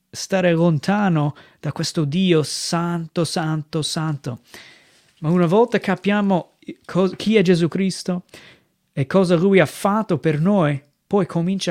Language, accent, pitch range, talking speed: Italian, native, 155-190 Hz, 130 wpm